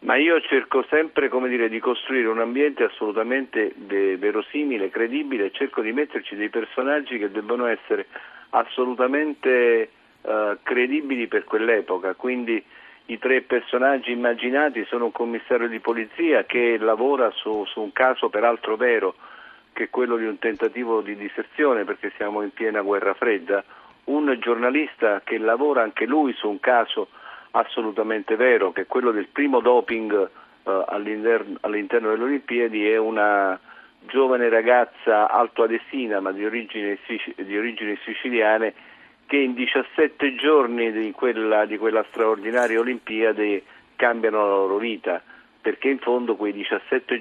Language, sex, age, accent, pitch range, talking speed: Italian, male, 50-69, native, 110-125 Hz, 135 wpm